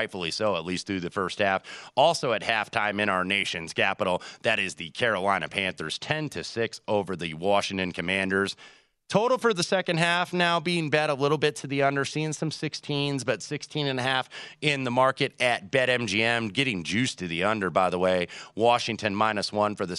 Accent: American